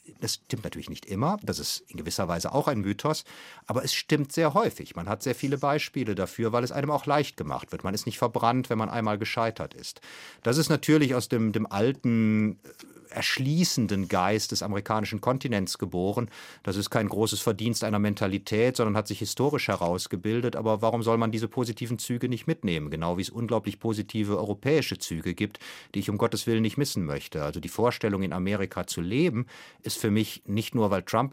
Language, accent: German, German